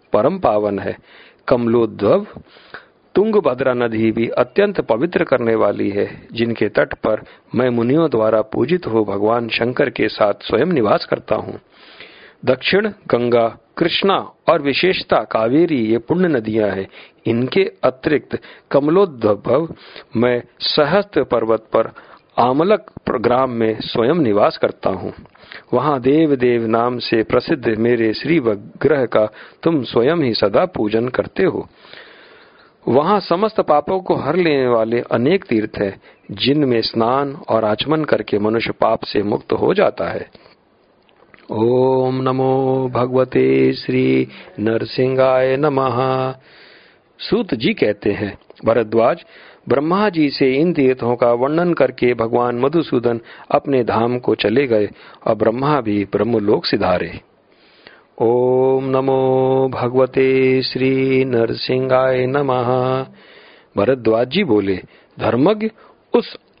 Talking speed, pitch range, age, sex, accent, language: 120 wpm, 115-135 Hz, 50-69, male, native, Hindi